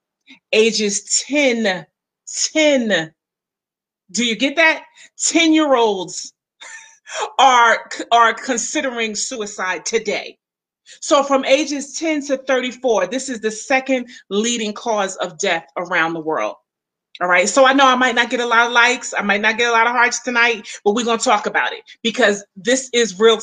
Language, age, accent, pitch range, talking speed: English, 30-49, American, 205-260 Hz, 160 wpm